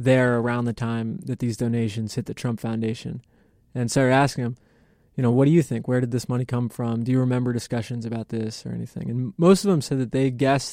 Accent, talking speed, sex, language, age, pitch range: American, 245 wpm, male, English, 20-39, 115-135 Hz